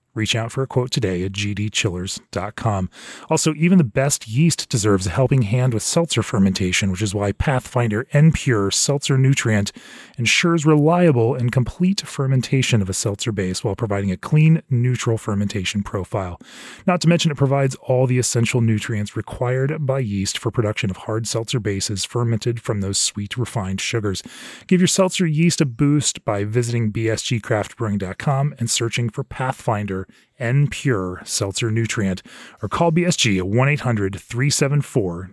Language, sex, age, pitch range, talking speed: English, male, 30-49, 100-135 Hz, 155 wpm